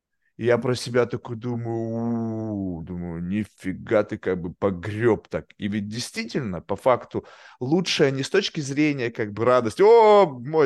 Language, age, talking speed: Russian, 20-39, 160 wpm